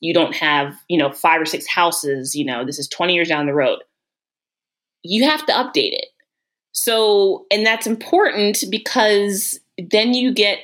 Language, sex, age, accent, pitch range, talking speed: English, female, 20-39, American, 160-215 Hz, 175 wpm